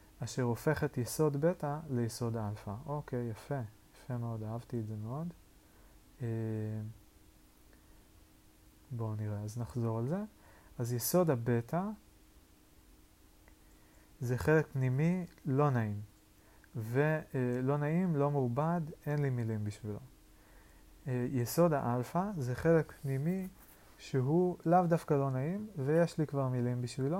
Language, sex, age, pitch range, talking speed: Hebrew, male, 30-49, 115-150 Hz, 120 wpm